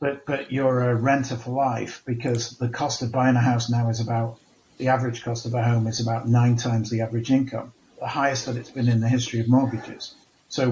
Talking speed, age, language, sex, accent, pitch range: 230 wpm, 50-69, English, male, British, 115-130 Hz